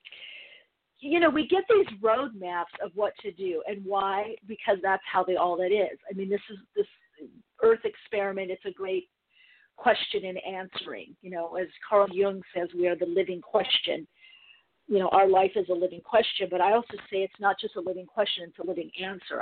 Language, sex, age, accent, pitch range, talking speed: English, female, 50-69, American, 180-225 Hz, 200 wpm